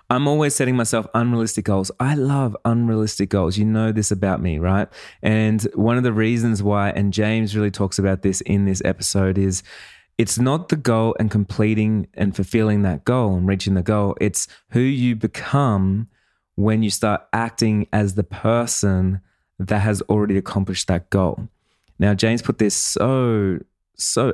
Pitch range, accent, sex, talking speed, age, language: 100-120 Hz, Australian, male, 170 wpm, 20-39, English